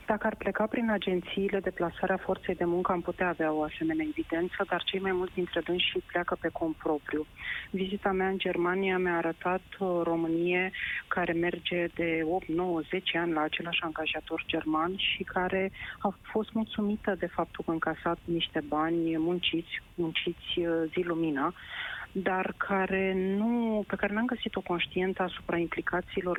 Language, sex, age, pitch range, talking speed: Romanian, female, 30-49, 160-185 Hz, 160 wpm